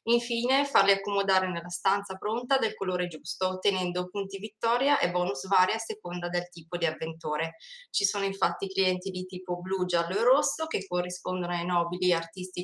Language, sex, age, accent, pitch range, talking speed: Italian, female, 20-39, native, 175-205 Hz, 170 wpm